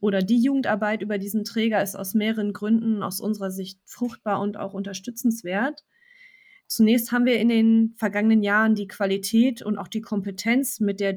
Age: 30-49